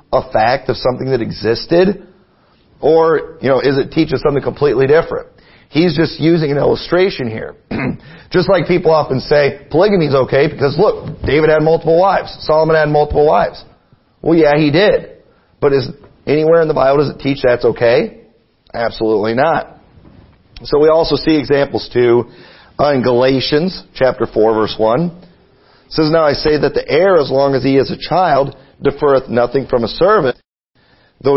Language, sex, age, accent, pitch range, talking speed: English, male, 40-59, American, 135-180 Hz, 170 wpm